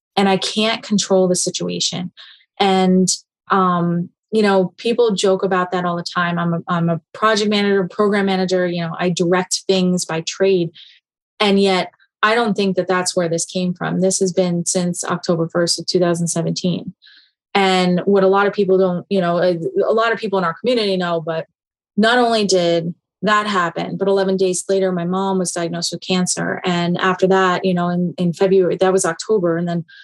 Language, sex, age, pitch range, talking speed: English, female, 20-39, 180-215 Hz, 190 wpm